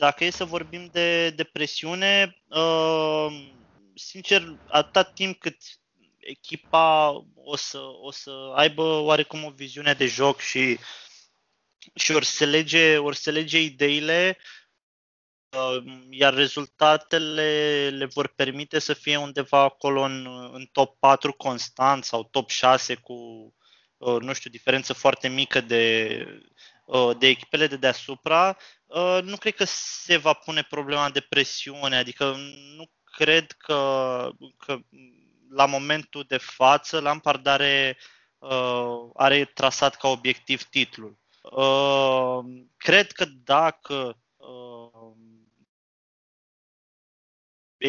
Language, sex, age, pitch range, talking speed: Romanian, male, 20-39, 130-155 Hz, 110 wpm